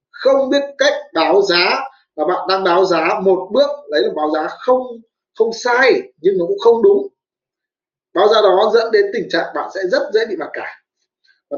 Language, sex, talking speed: Vietnamese, male, 200 wpm